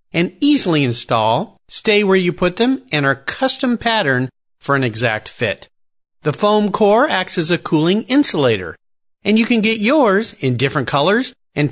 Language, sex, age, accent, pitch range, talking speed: English, male, 40-59, American, 130-210 Hz, 170 wpm